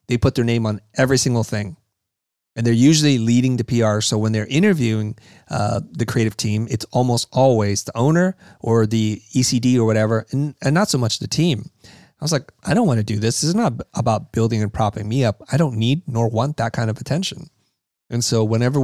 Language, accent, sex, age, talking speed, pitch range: English, American, male, 30-49, 220 wpm, 110-140 Hz